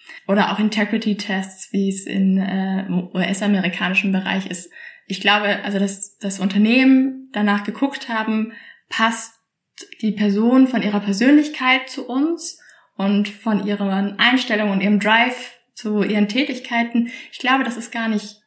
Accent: German